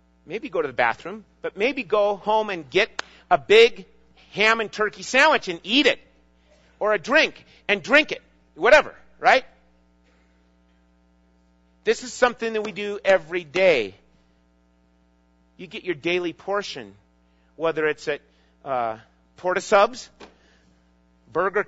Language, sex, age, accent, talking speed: English, male, 40-59, American, 135 wpm